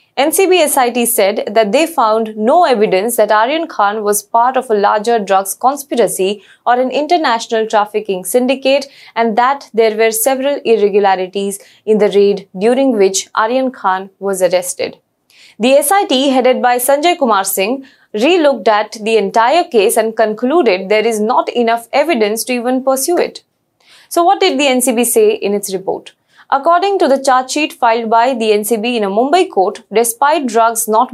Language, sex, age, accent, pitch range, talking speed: English, female, 20-39, Indian, 210-270 Hz, 170 wpm